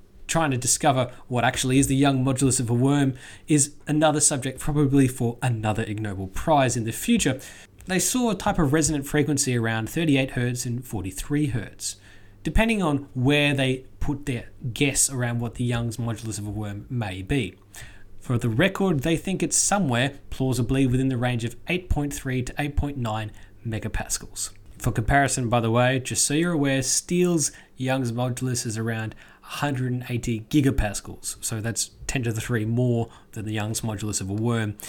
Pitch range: 110-145 Hz